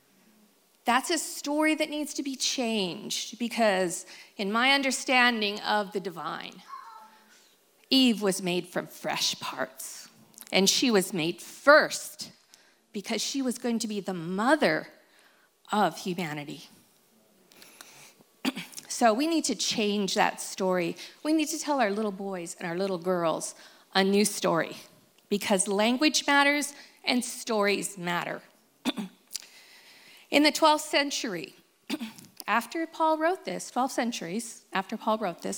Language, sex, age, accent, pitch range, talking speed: English, female, 40-59, American, 205-290 Hz, 130 wpm